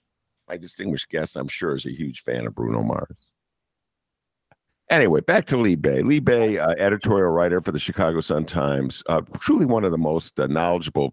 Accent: American